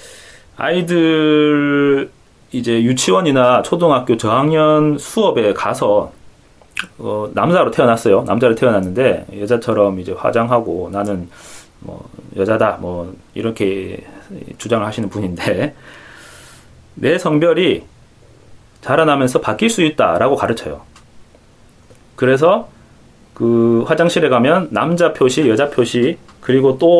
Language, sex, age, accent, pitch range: Korean, male, 30-49, native, 110-160 Hz